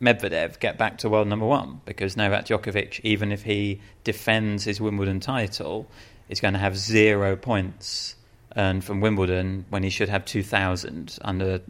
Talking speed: 165 wpm